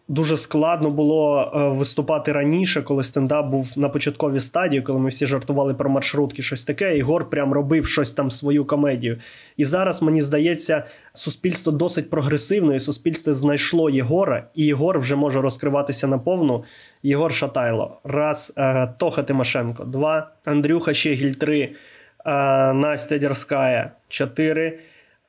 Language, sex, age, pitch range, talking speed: Ukrainian, male, 20-39, 140-155 Hz, 130 wpm